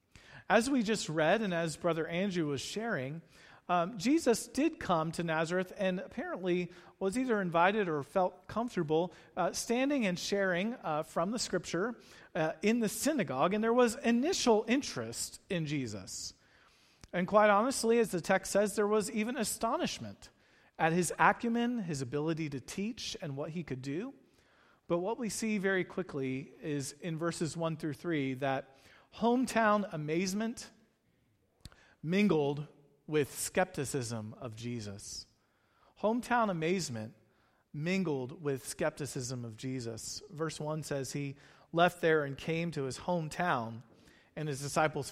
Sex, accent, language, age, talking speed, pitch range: male, American, English, 40-59, 140 wpm, 140-195 Hz